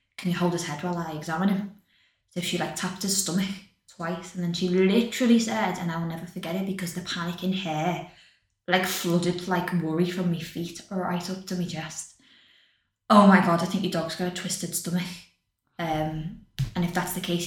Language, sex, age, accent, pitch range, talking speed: English, female, 20-39, British, 165-185 Hz, 210 wpm